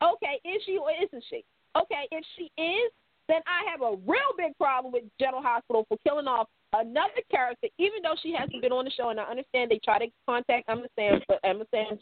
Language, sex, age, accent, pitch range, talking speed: English, female, 40-59, American, 230-335 Hz, 225 wpm